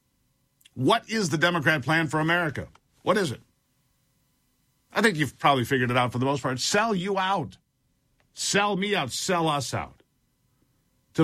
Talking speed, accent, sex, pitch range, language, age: 165 wpm, American, male, 130-180 Hz, English, 50-69